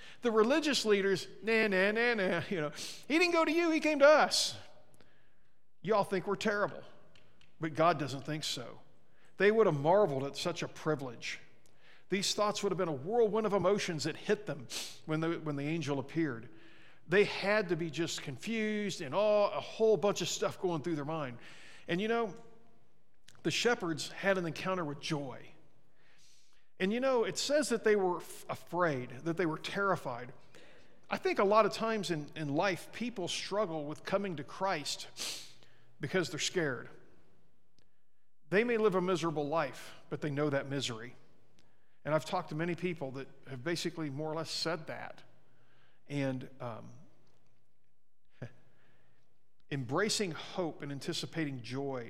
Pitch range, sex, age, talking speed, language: 145-205 Hz, male, 50-69, 160 wpm, English